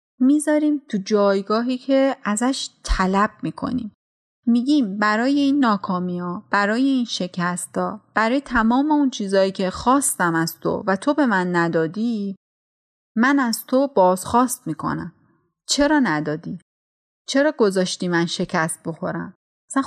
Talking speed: 125 wpm